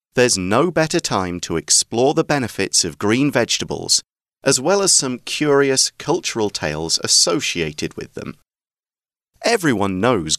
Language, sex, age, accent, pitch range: Chinese, male, 40-59, British, 90-145 Hz